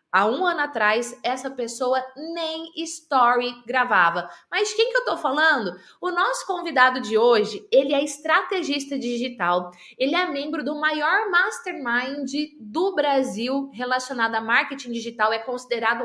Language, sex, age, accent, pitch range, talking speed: Portuguese, female, 20-39, Brazilian, 245-320 Hz, 140 wpm